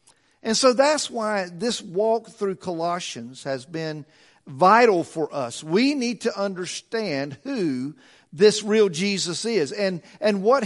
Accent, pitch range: American, 150-225 Hz